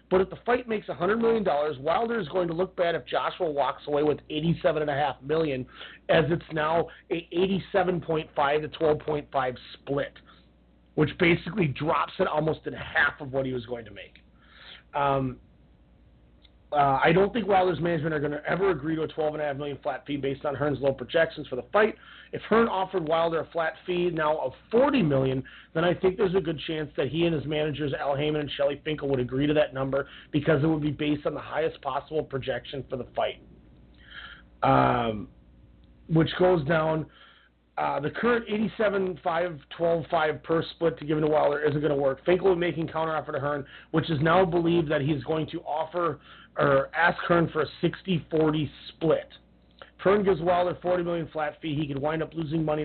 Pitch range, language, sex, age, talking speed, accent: 140-175 Hz, English, male, 30-49, 195 wpm, American